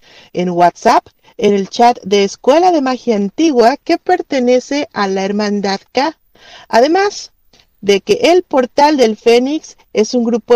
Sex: female